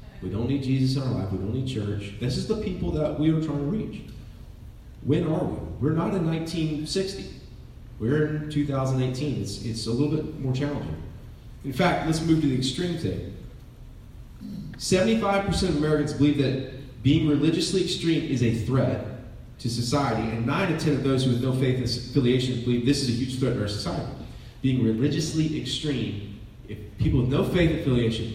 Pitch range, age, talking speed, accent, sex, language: 120-160 Hz, 30-49, 185 wpm, American, male, English